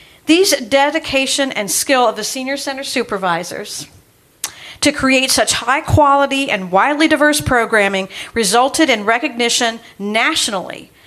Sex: female